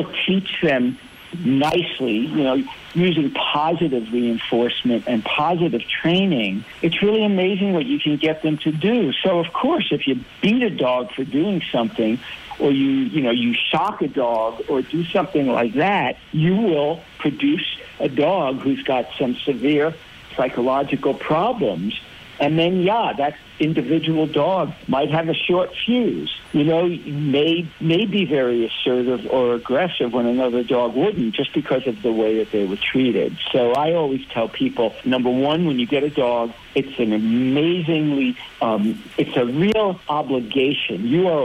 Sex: male